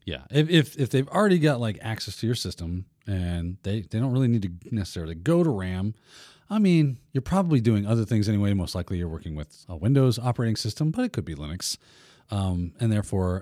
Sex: male